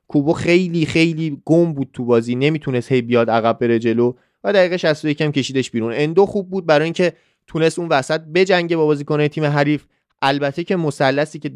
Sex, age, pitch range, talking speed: male, 30-49, 125-170 Hz, 195 wpm